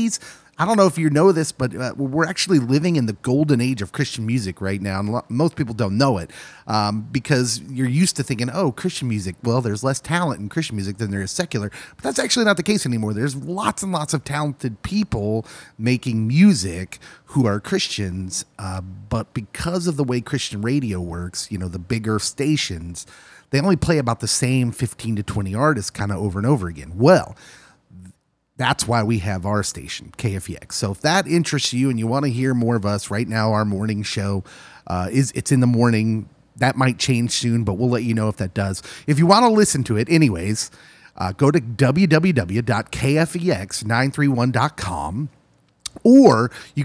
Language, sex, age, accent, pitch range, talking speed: English, male, 30-49, American, 105-150 Hz, 195 wpm